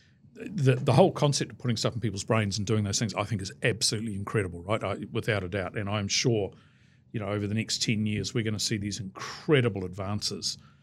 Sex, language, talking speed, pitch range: male, English, 225 wpm, 105-125 Hz